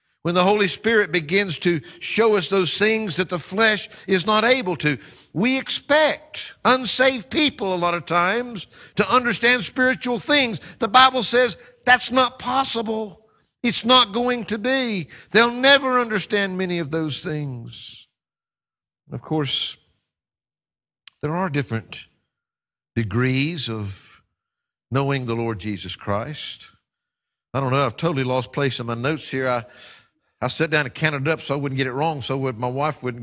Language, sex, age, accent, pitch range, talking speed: English, male, 60-79, American, 130-215 Hz, 160 wpm